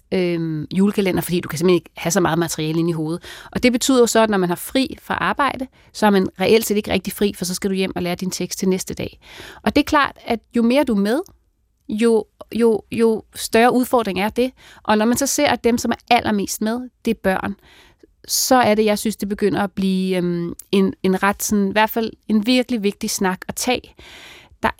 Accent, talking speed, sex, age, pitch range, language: native, 245 wpm, female, 30-49, 190-245 Hz, Danish